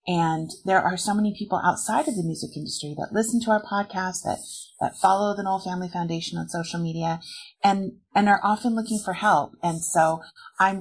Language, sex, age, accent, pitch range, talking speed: English, female, 30-49, American, 165-205 Hz, 200 wpm